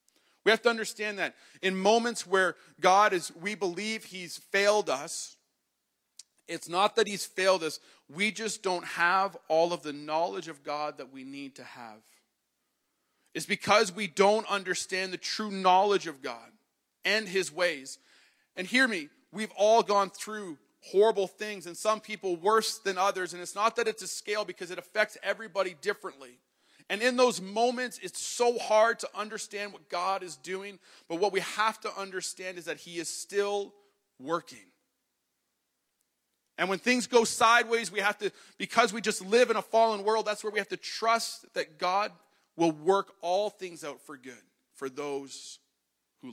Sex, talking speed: male, 175 wpm